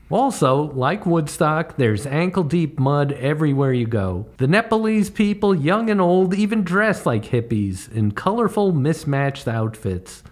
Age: 50-69